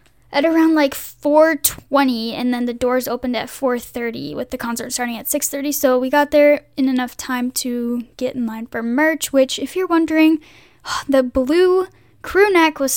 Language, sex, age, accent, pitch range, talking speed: English, female, 10-29, American, 240-295 Hz, 195 wpm